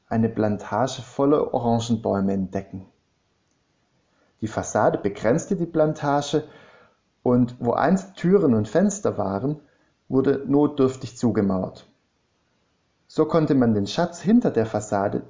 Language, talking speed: German, 110 wpm